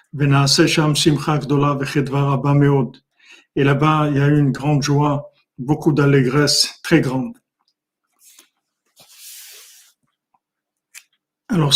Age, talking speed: 50-69, 70 wpm